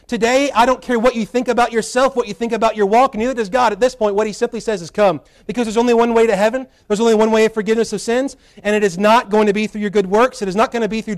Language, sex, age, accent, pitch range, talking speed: English, male, 30-49, American, 185-235 Hz, 325 wpm